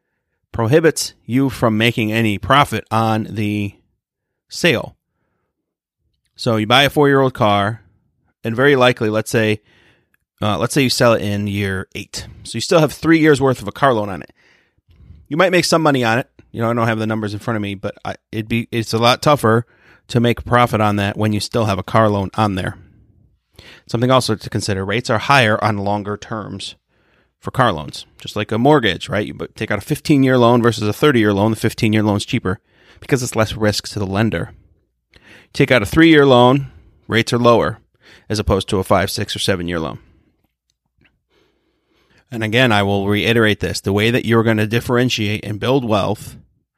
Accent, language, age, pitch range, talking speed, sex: American, English, 30-49, 105-125 Hz, 200 wpm, male